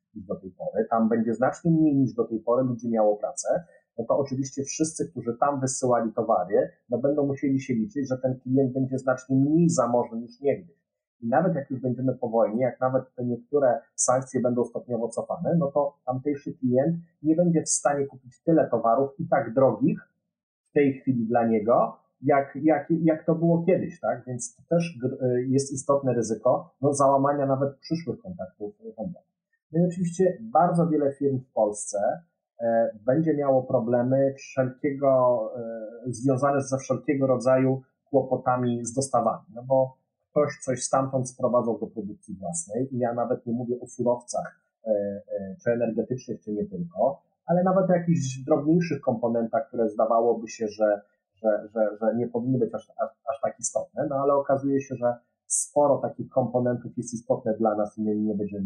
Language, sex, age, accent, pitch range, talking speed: Polish, male, 40-59, native, 120-145 Hz, 165 wpm